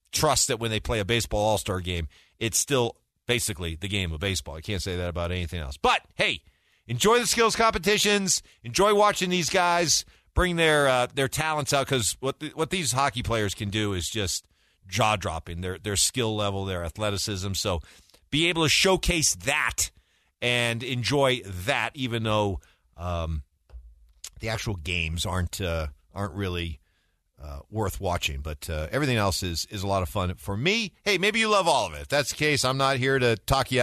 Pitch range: 90-135 Hz